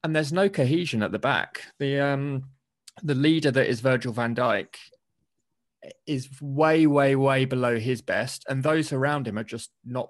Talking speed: 180 wpm